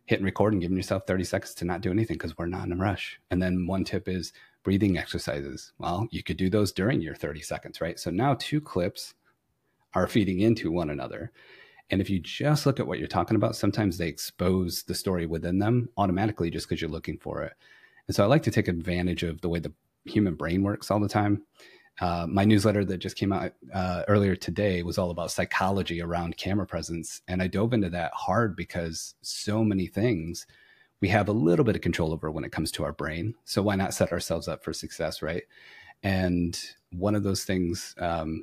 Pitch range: 85-105 Hz